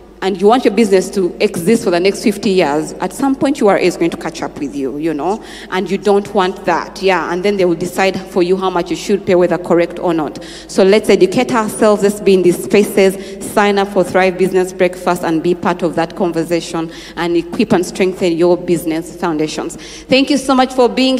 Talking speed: 230 wpm